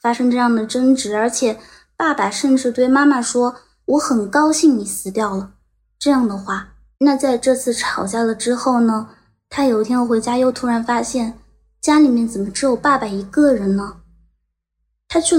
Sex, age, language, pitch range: female, 20-39, Chinese, 225-285 Hz